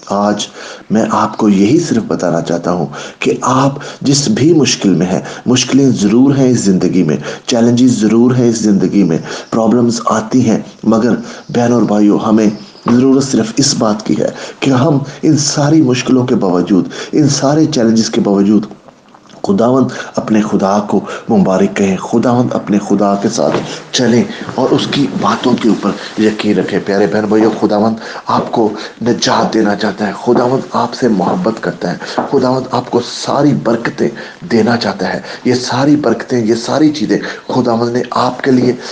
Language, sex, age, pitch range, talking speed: English, male, 30-49, 105-135 Hz, 160 wpm